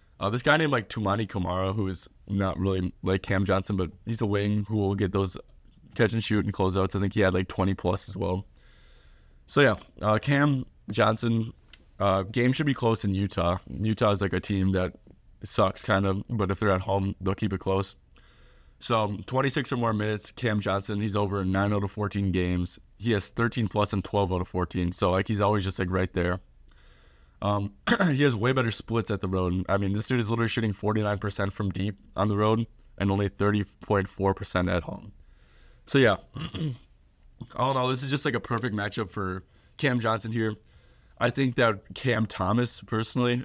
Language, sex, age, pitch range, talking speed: English, male, 20-39, 95-110 Hz, 200 wpm